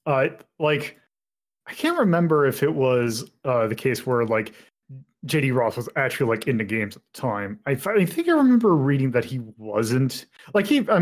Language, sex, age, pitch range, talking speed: English, male, 20-39, 110-145 Hz, 200 wpm